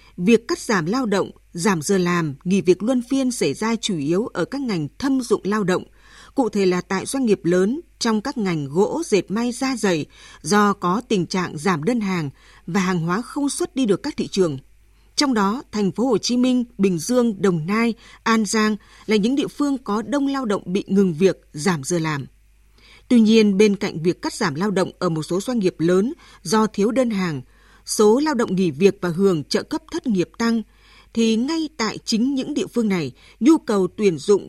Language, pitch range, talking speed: Vietnamese, 180-235 Hz, 215 wpm